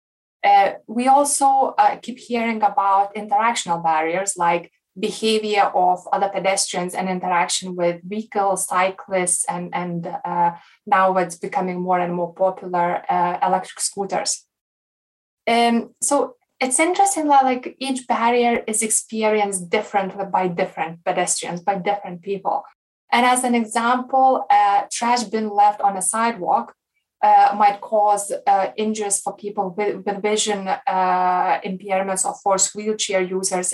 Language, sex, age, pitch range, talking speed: English, female, 20-39, 190-230 Hz, 135 wpm